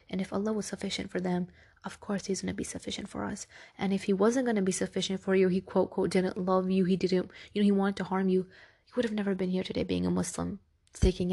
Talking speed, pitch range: 275 wpm, 185-205 Hz